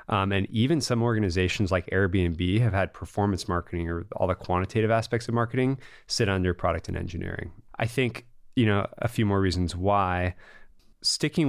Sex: male